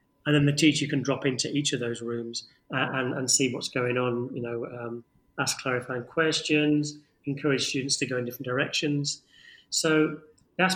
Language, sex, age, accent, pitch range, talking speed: Polish, male, 30-49, British, 125-145 Hz, 185 wpm